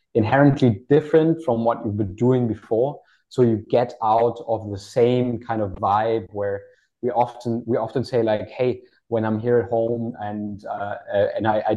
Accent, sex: German, male